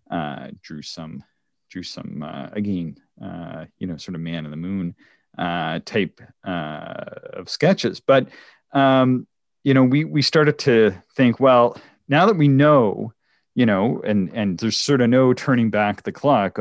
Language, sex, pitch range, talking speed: English, male, 95-125 Hz, 170 wpm